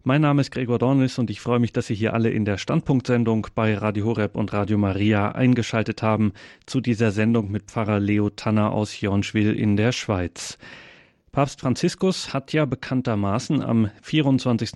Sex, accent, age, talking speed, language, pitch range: male, German, 30-49, 175 wpm, German, 110-135 Hz